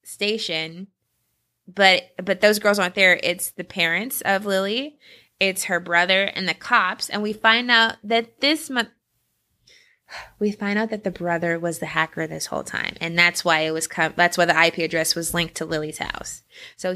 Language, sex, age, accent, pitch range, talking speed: English, female, 20-39, American, 180-235 Hz, 195 wpm